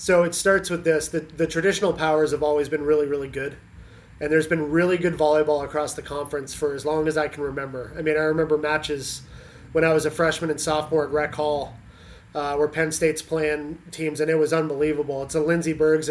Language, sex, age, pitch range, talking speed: English, male, 20-39, 150-165 Hz, 225 wpm